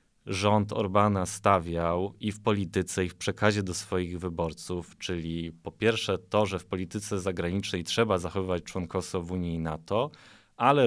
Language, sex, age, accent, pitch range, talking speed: Polish, male, 20-39, native, 95-115 Hz, 155 wpm